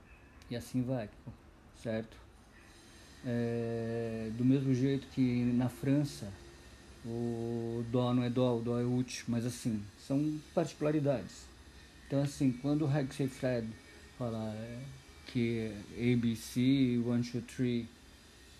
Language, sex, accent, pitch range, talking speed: Portuguese, male, Brazilian, 110-130 Hz, 115 wpm